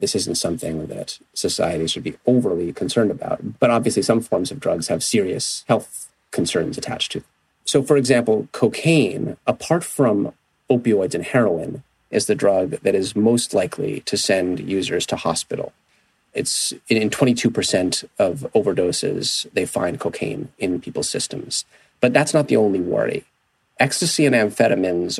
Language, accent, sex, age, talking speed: English, American, male, 30-49, 150 wpm